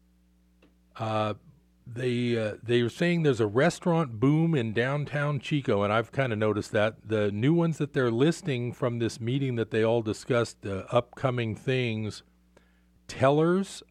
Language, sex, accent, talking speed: English, male, American, 160 wpm